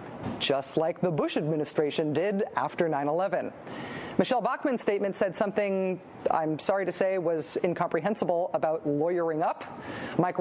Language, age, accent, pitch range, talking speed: English, 40-59, American, 175-255 Hz, 135 wpm